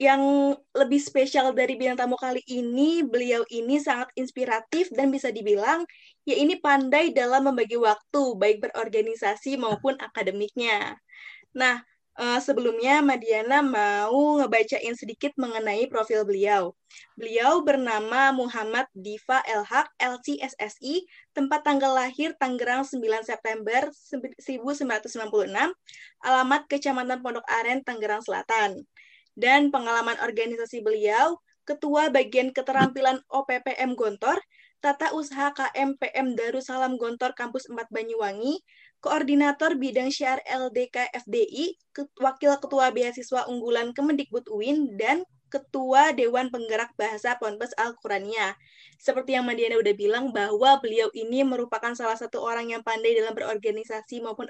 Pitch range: 235-280 Hz